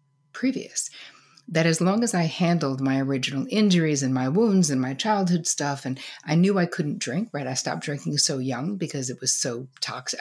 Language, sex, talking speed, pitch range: English, female, 200 wpm, 140-175 Hz